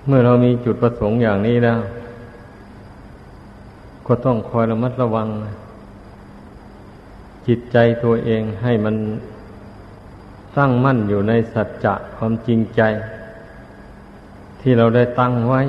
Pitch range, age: 105-120 Hz, 60-79